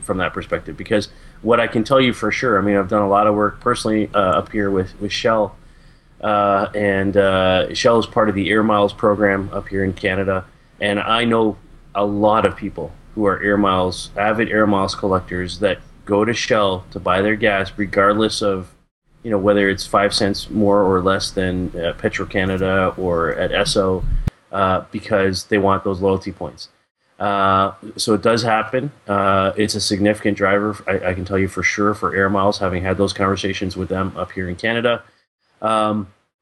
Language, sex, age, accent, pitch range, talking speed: English, male, 30-49, American, 95-110 Hz, 200 wpm